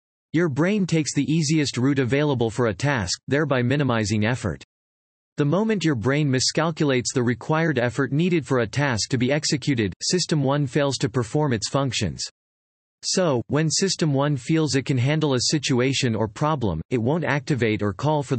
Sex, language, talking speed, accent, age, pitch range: male, English, 175 wpm, American, 40-59, 120-150 Hz